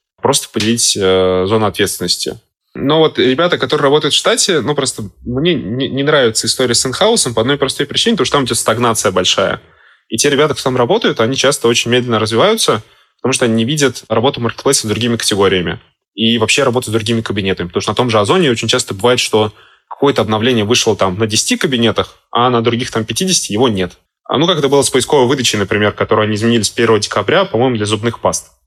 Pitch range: 110-135 Hz